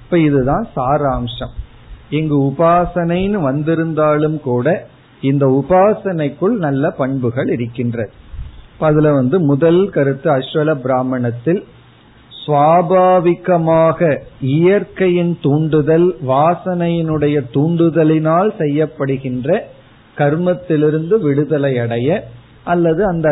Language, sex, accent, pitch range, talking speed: Tamil, male, native, 130-175 Hz, 70 wpm